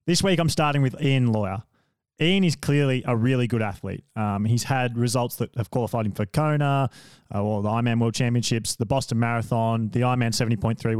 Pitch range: 110-135 Hz